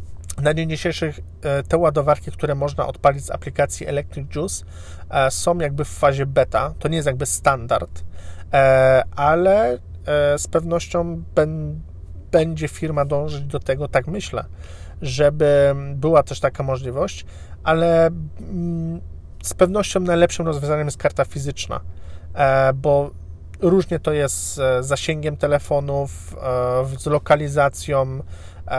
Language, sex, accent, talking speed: Polish, male, native, 115 wpm